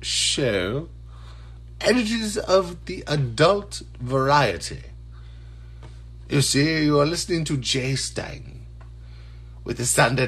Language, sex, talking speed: English, male, 100 wpm